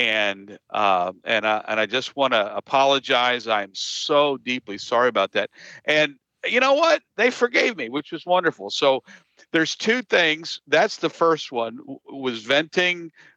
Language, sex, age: English, male, 50-69